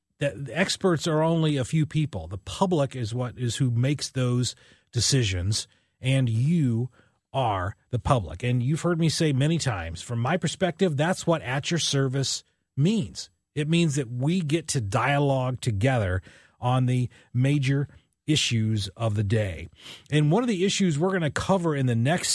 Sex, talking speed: male, 170 wpm